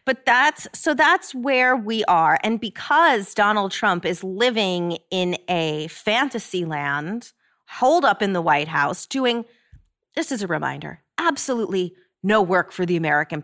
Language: English